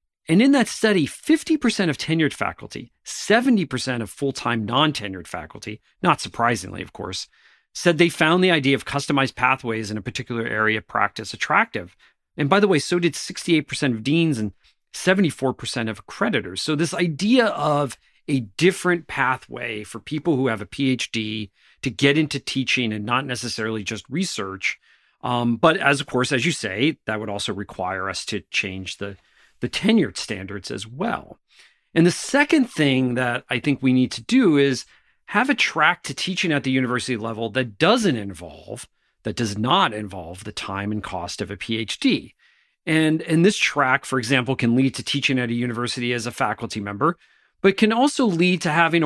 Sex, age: male, 40-59